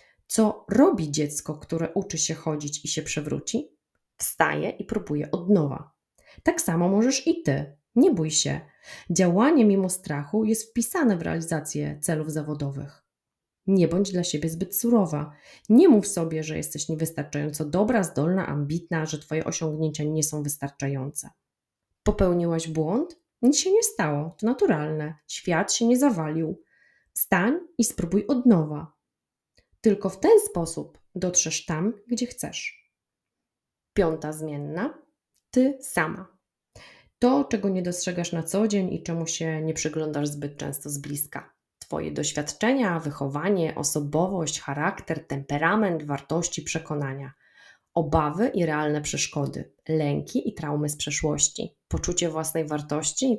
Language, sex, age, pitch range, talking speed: Polish, female, 20-39, 150-205 Hz, 135 wpm